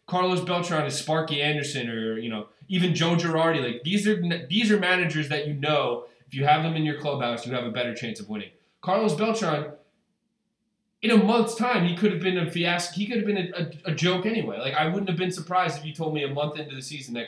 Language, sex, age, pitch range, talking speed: English, male, 20-39, 115-175 Hz, 245 wpm